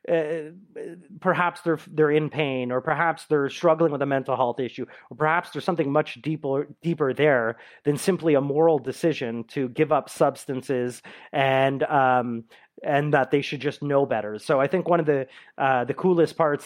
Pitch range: 130-160 Hz